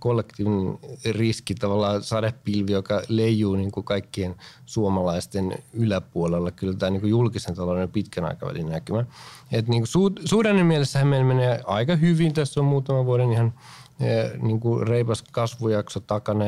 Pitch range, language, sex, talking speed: 100-130 Hz, Finnish, male, 110 wpm